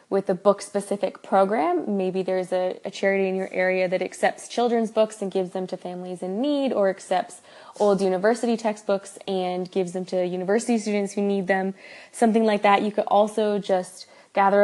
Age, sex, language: 20-39, female, English